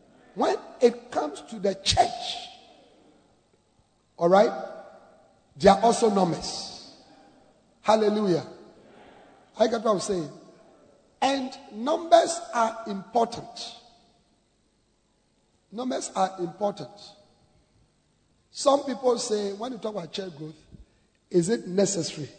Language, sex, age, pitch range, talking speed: English, male, 50-69, 175-230 Hz, 95 wpm